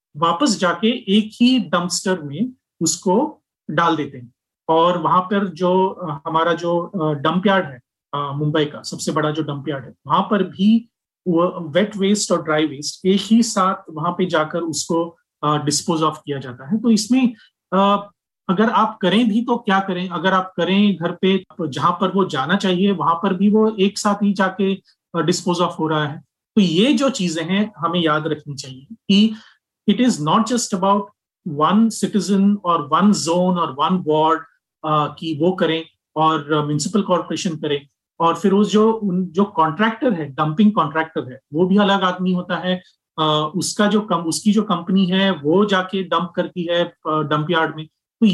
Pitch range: 160-200 Hz